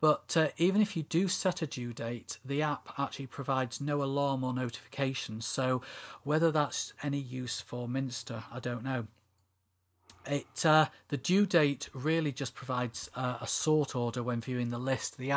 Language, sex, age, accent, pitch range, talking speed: English, male, 40-59, British, 125-150 Hz, 170 wpm